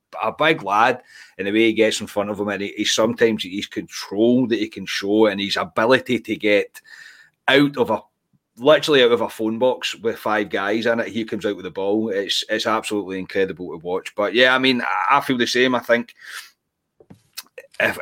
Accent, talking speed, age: British, 210 wpm, 30-49